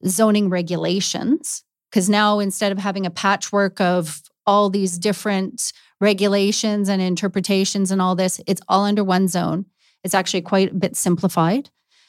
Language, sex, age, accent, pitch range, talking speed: English, female, 30-49, American, 185-215 Hz, 150 wpm